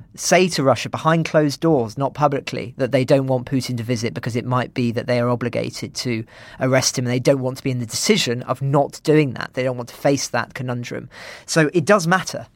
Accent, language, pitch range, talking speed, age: British, English, 125-150 Hz, 240 wpm, 40-59